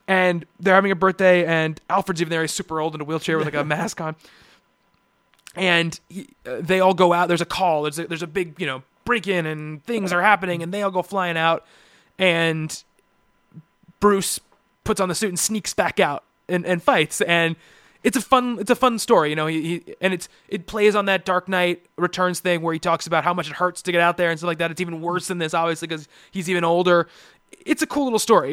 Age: 20-39